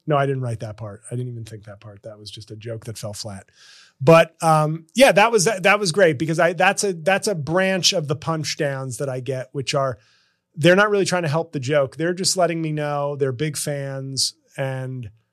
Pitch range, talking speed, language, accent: 125-170 Hz, 245 wpm, English, American